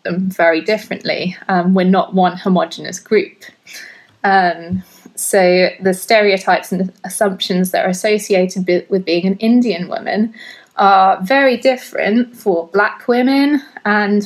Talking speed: 135 wpm